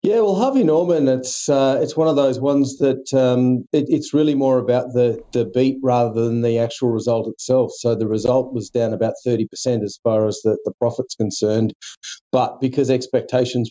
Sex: male